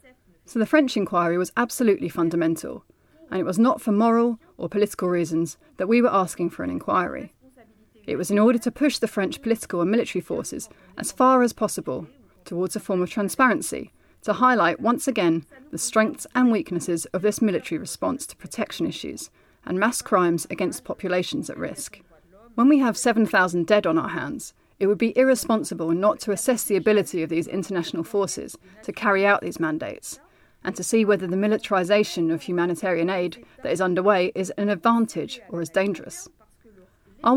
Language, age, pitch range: English, 30-49, 180-230 Hz